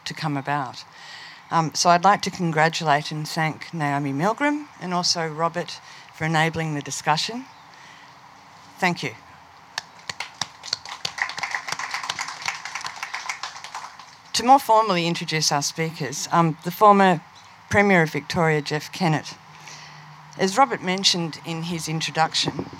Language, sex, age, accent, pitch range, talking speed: English, female, 50-69, Australian, 145-175 Hz, 110 wpm